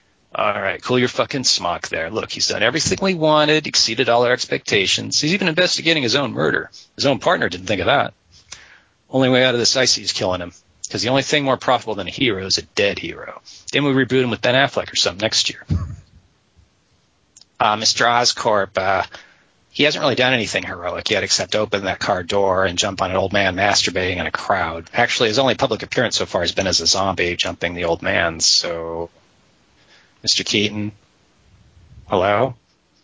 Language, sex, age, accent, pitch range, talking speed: English, male, 40-59, American, 100-135 Hz, 200 wpm